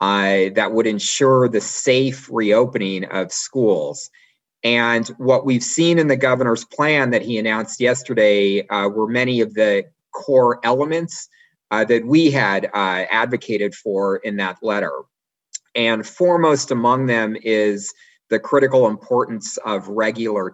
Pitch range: 110-140 Hz